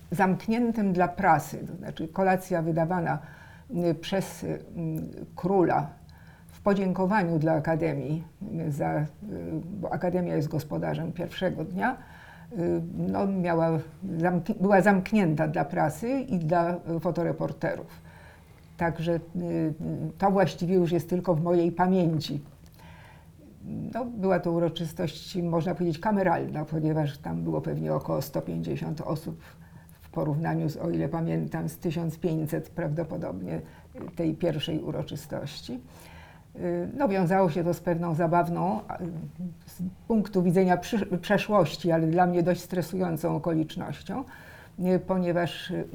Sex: female